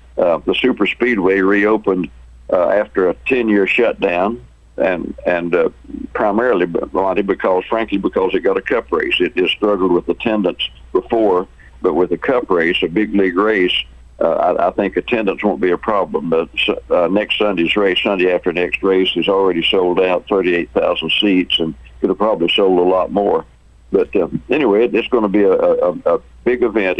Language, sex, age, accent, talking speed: English, male, 60-79, American, 180 wpm